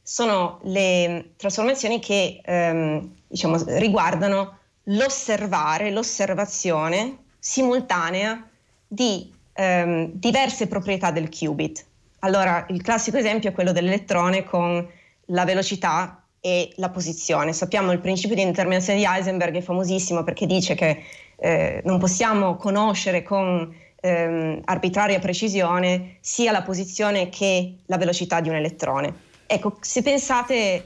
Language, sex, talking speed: Italian, female, 120 wpm